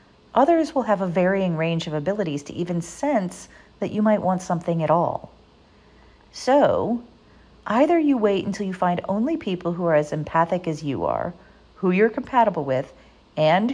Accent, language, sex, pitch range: American, English, female, 165-230 Hz